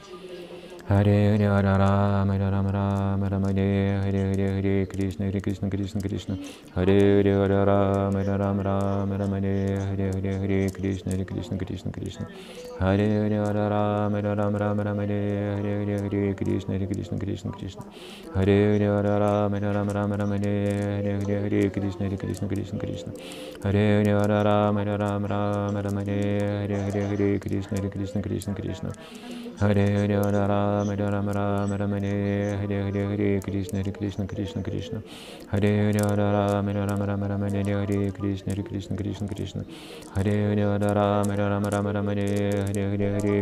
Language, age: Russian, 20-39